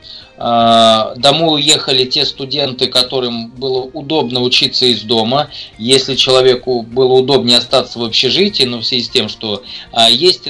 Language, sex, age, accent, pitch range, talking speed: Russian, male, 20-39, native, 110-135 Hz, 145 wpm